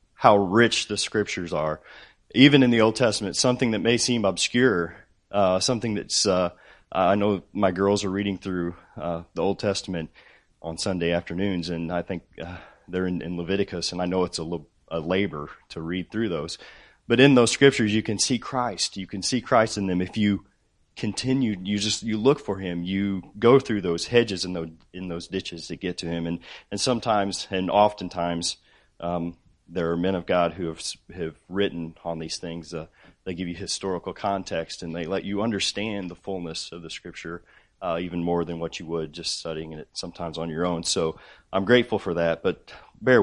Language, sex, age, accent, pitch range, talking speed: English, male, 30-49, American, 85-105 Hz, 200 wpm